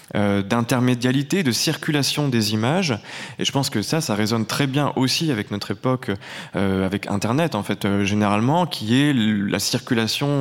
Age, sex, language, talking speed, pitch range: 20-39, male, French, 165 wpm, 105-140 Hz